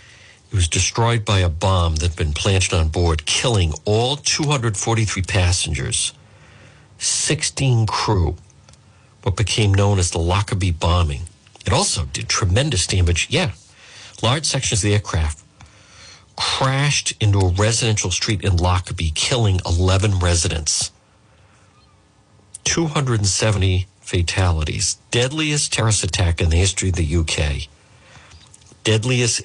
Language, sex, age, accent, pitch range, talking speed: English, male, 60-79, American, 85-110 Hz, 115 wpm